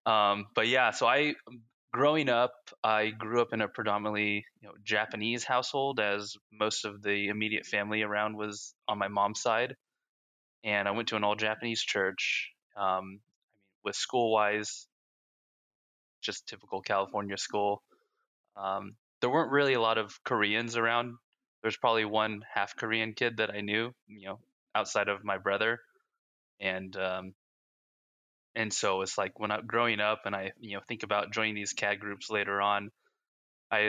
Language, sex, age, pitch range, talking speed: English, male, 20-39, 100-110 Hz, 165 wpm